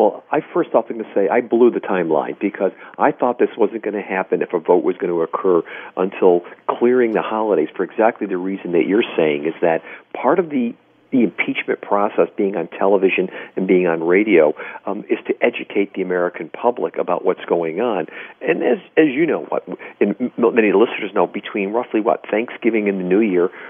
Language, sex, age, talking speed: English, male, 50-69, 205 wpm